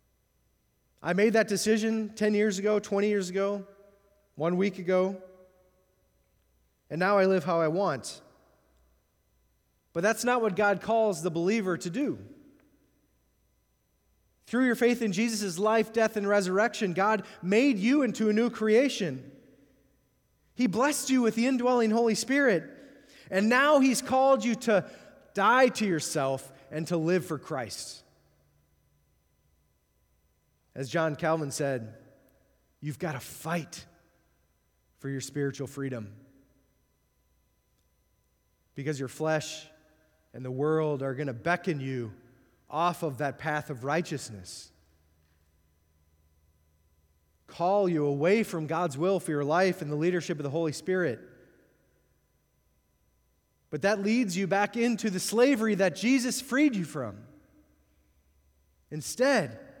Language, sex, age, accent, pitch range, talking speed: English, male, 30-49, American, 135-215 Hz, 125 wpm